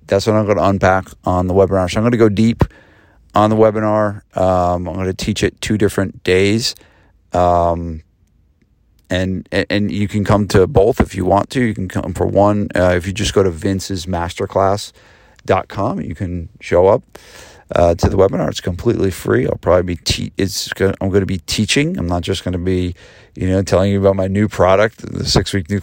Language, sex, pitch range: English, male, 90-105 Hz